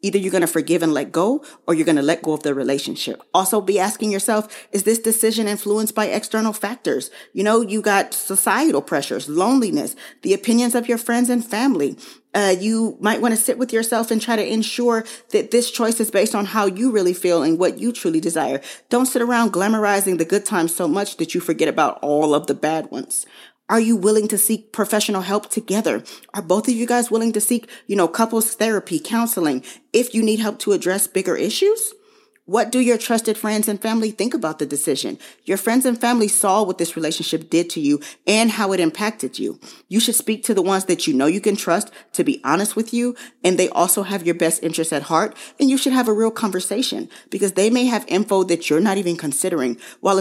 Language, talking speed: English, 225 wpm